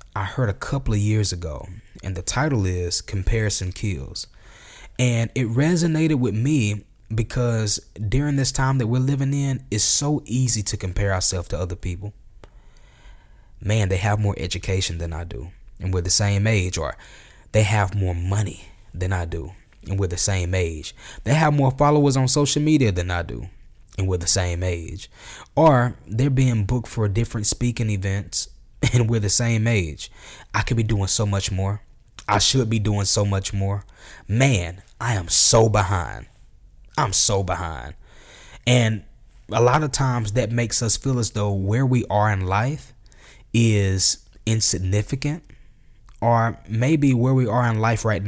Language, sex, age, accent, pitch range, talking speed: English, male, 20-39, American, 95-120 Hz, 170 wpm